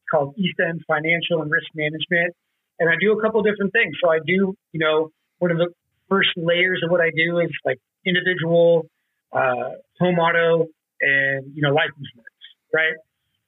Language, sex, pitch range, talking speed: English, male, 155-185 Hz, 185 wpm